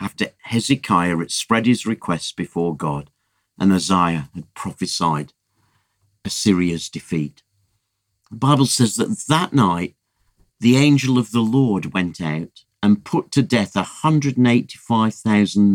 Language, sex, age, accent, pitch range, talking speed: English, male, 50-69, British, 95-125 Hz, 120 wpm